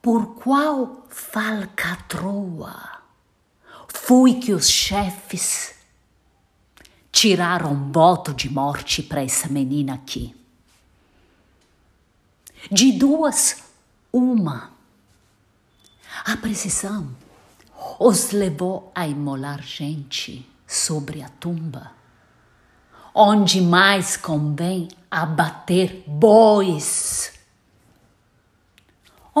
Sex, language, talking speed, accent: female, Portuguese, 70 wpm, Italian